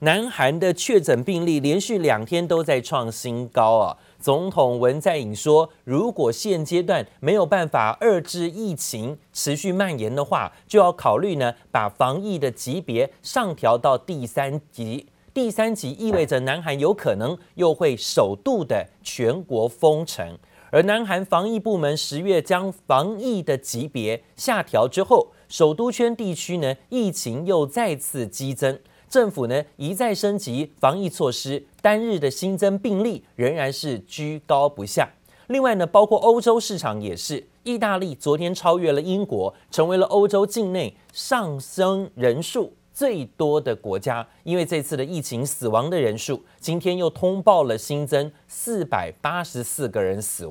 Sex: male